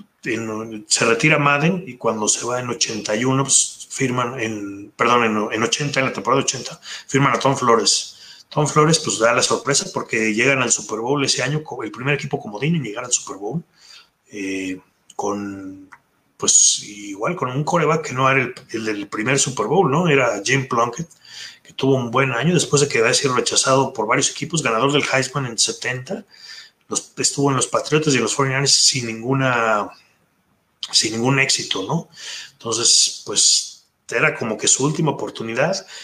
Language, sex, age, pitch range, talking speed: Spanish, male, 30-49, 115-145 Hz, 180 wpm